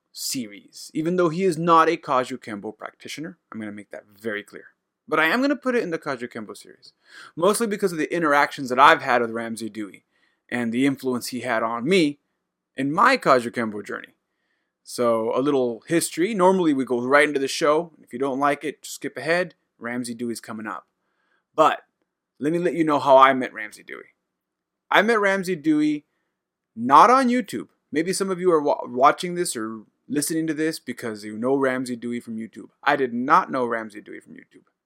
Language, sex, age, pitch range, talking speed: English, male, 20-39, 120-170 Hz, 205 wpm